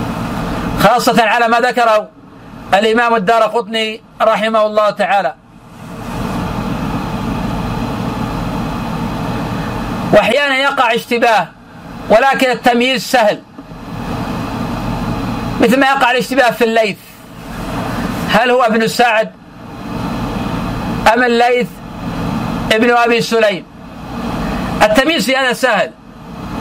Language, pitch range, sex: Arabic, 225-250 Hz, male